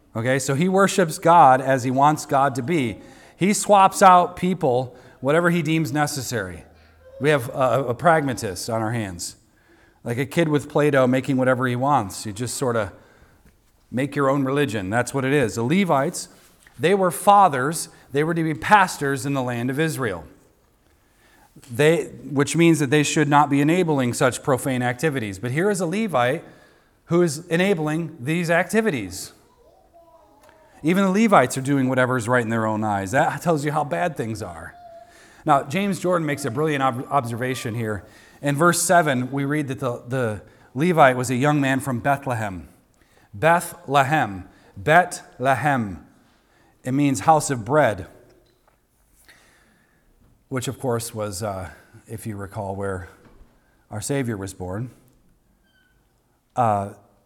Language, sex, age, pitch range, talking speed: English, male, 40-59, 120-160 Hz, 155 wpm